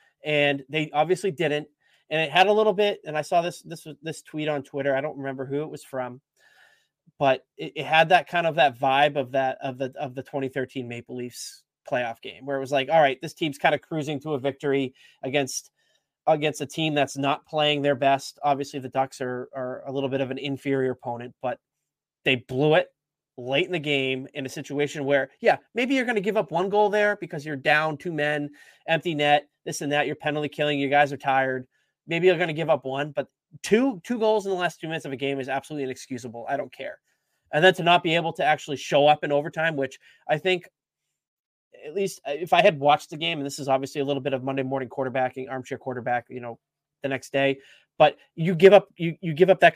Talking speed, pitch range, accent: 235 wpm, 135-165 Hz, American